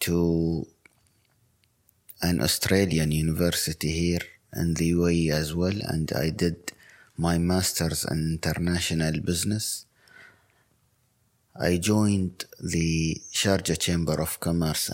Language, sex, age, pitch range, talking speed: German, male, 30-49, 80-90 Hz, 100 wpm